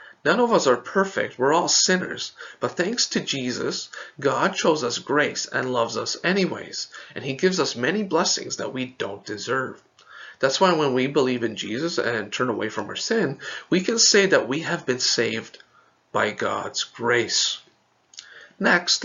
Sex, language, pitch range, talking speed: male, English, 125-175 Hz, 175 wpm